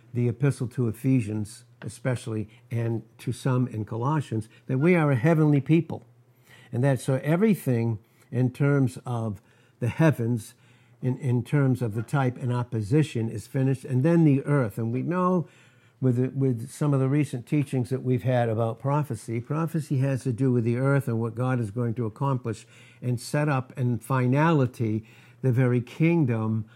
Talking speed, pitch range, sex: 170 wpm, 120-145 Hz, male